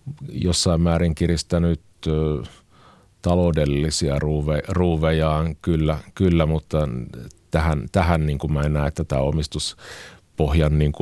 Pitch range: 80-95 Hz